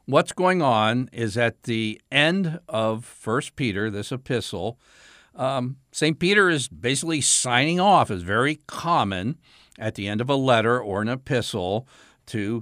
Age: 60-79